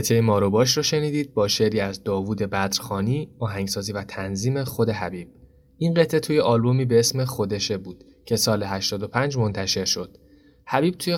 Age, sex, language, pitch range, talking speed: 20-39, male, Persian, 100-125 Hz, 165 wpm